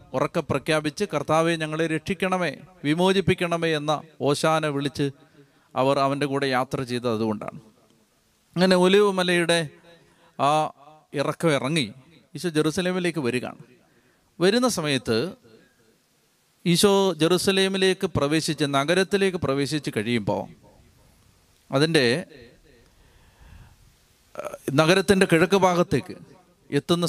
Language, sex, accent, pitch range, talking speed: Malayalam, male, native, 140-185 Hz, 80 wpm